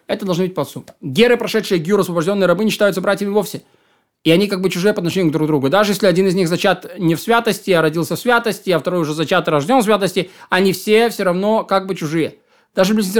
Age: 20-39